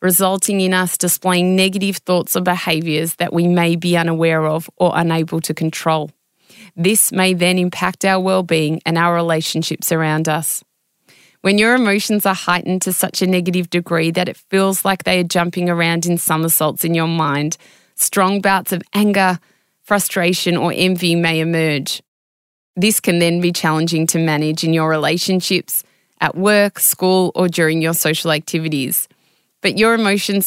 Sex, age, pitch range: female, 20-39, 165-190 Hz